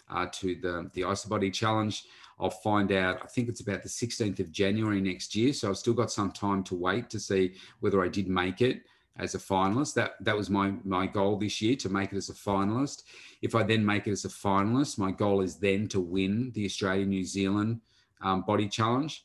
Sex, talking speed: male, 225 wpm